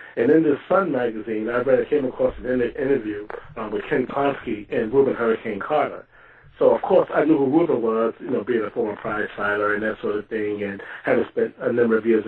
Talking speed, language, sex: 230 wpm, English, male